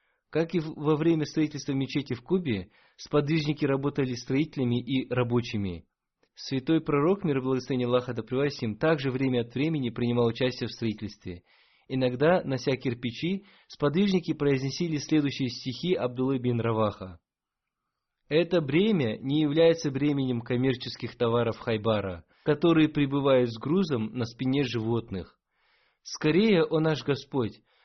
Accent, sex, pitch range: native, male, 125-160 Hz